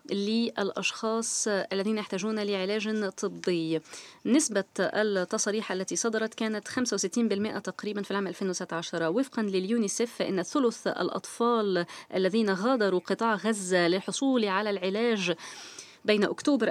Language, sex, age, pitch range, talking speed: Arabic, female, 20-39, 195-240 Hz, 105 wpm